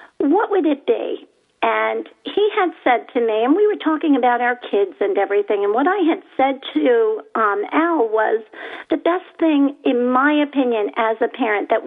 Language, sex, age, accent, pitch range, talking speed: English, female, 50-69, American, 240-370 Hz, 190 wpm